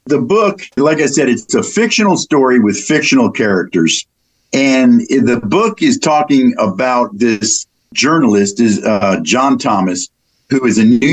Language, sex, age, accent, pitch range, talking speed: English, male, 50-69, American, 110-155 Hz, 150 wpm